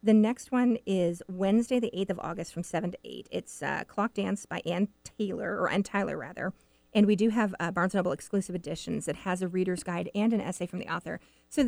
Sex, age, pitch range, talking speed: female, 40-59, 185-235 Hz, 230 wpm